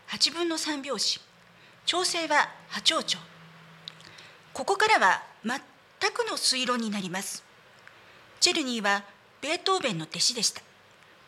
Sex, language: female, Japanese